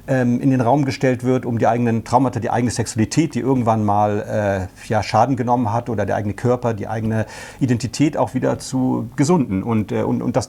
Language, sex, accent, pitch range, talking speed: German, male, German, 115-140 Hz, 200 wpm